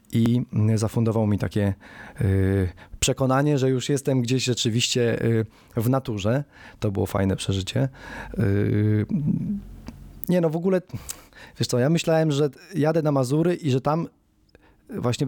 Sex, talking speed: male, 125 wpm